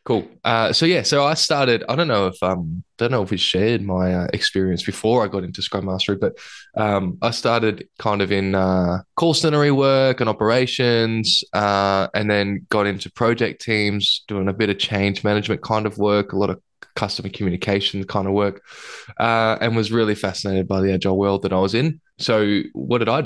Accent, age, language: Australian, 10-29, English